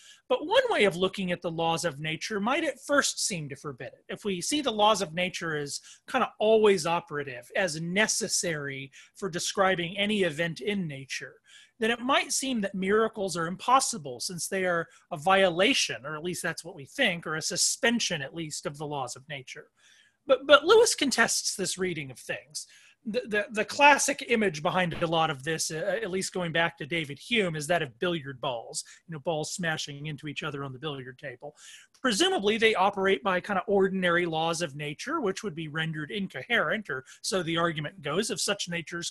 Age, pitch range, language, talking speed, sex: 30-49, 165-215 Hz, English, 205 wpm, male